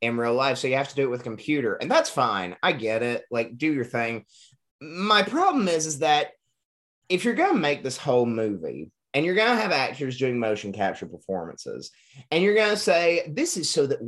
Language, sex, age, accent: English, male, 30-49, American